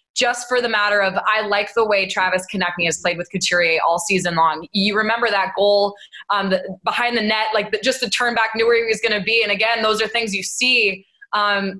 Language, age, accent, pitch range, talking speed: English, 20-39, American, 190-230 Hz, 245 wpm